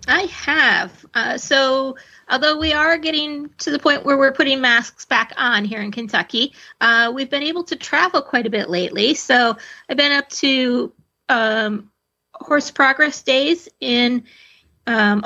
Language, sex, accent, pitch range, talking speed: English, female, American, 230-300 Hz, 160 wpm